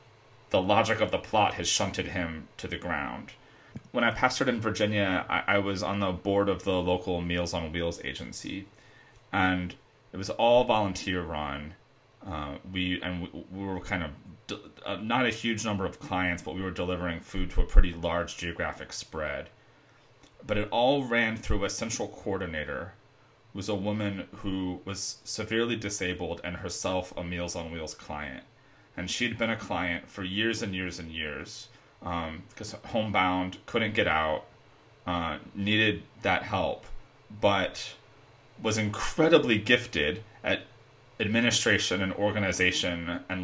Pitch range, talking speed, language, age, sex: 90-110 Hz, 155 wpm, English, 30-49, male